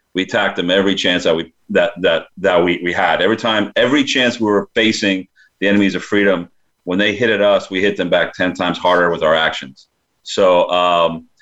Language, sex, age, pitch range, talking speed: English, male, 40-59, 90-105 Hz, 215 wpm